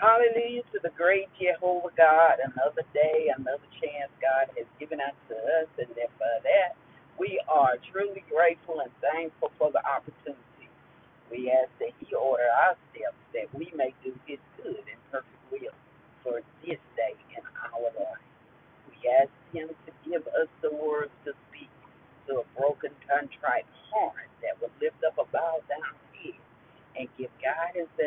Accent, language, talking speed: American, English, 160 wpm